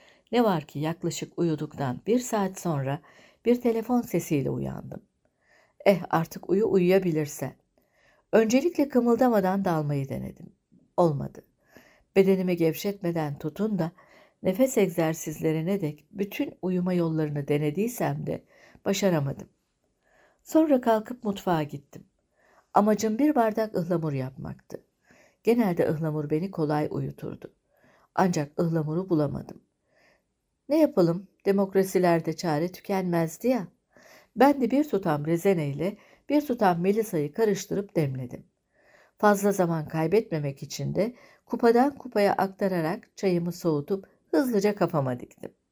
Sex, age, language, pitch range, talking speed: female, 60-79, Turkish, 155-210 Hz, 105 wpm